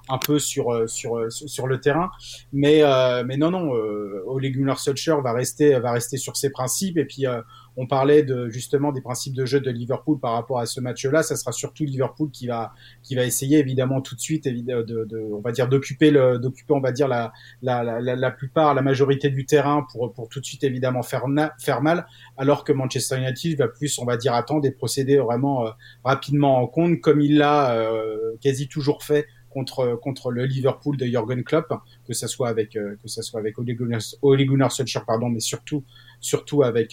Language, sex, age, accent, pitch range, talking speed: French, male, 30-49, French, 120-145 Hz, 215 wpm